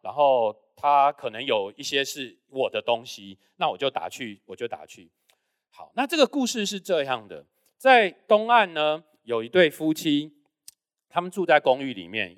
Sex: male